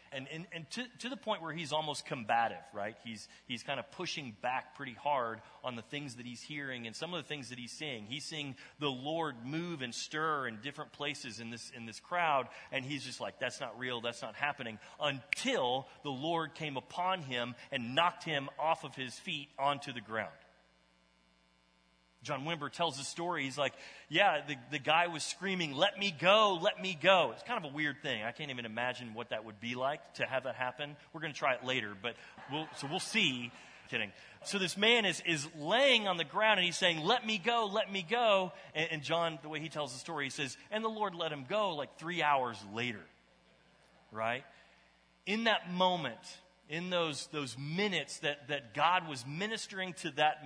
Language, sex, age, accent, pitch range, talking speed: English, male, 30-49, American, 125-175 Hz, 215 wpm